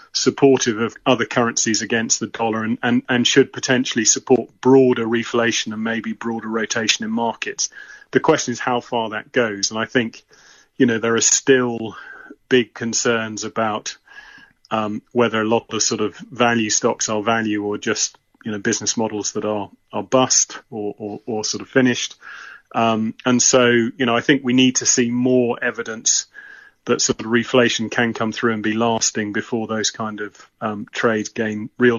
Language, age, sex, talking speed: English, 30-49, male, 180 wpm